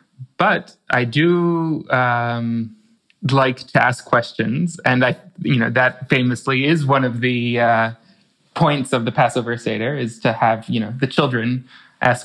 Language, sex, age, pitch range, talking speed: English, male, 20-39, 120-150 Hz, 155 wpm